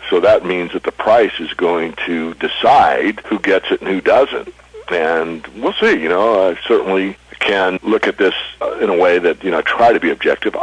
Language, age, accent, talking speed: English, 60-79, American, 210 wpm